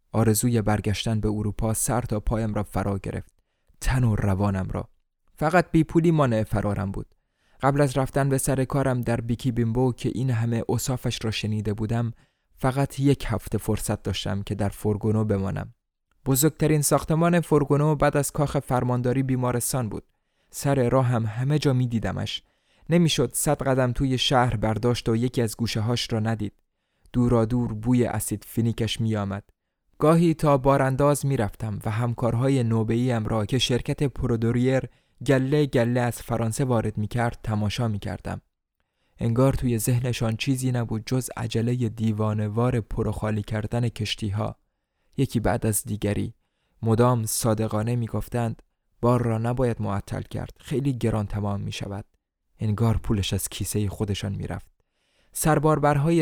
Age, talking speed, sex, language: 20-39, 145 wpm, male, Persian